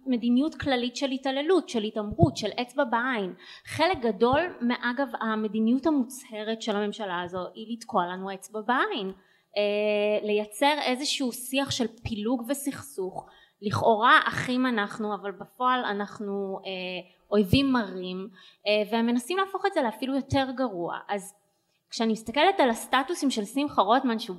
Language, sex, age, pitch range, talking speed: Hebrew, female, 20-39, 205-260 Hz, 140 wpm